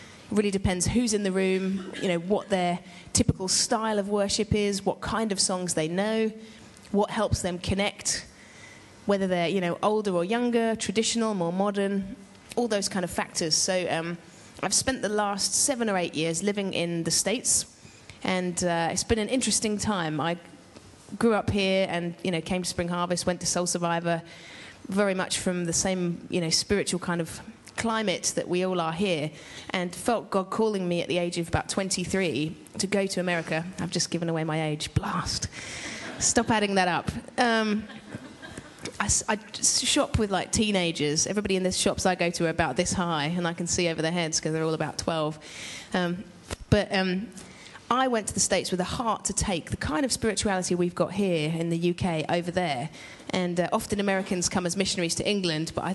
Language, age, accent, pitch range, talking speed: English, 30-49, British, 170-205 Hz, 195 wpm